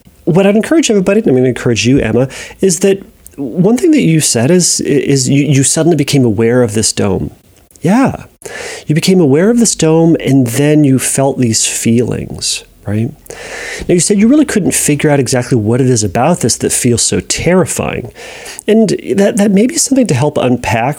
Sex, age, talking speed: male, 40-59, 195 wpm